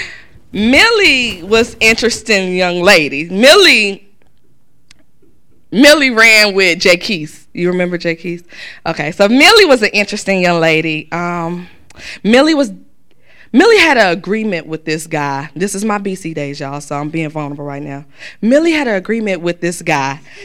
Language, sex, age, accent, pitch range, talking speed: English, female, 20-39, American, 160-205 Hz, 155 wpm